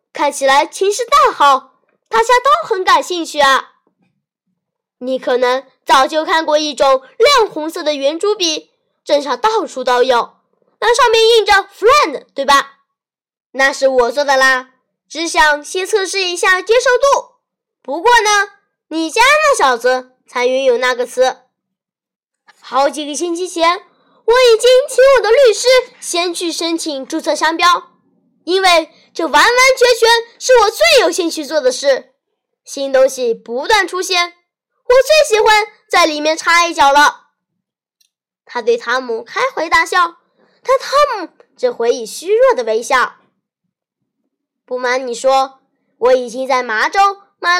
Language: Chinese